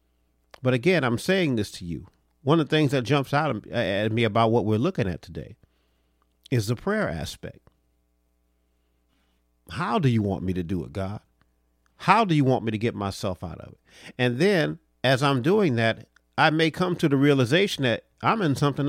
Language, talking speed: English, 195 wpm